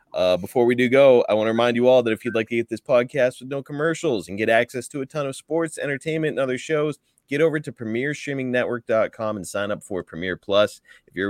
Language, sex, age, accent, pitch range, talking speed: English, male, 30-49, American, 95-130 Hz, 245 wpm